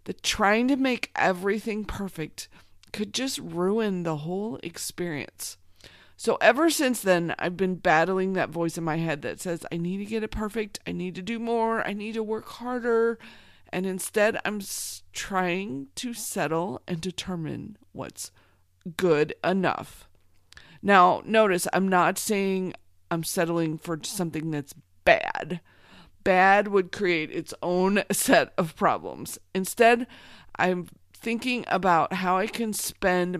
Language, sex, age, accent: English, female, 40-59, American